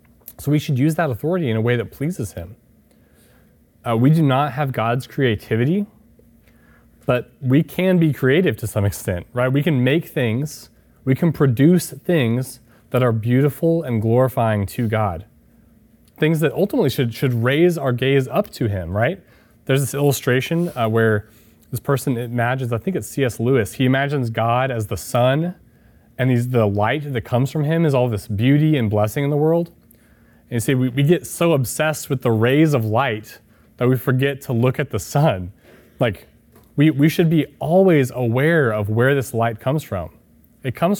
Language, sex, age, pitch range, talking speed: English, male, 30-49, 115-150 Hz, 185 wpm